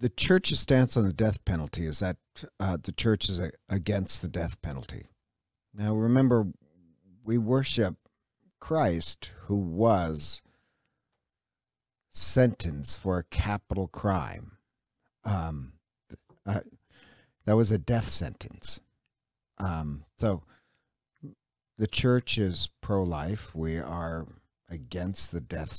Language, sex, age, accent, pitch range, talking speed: English, male, 50-69, American, 85-115 Hz, 110 wpm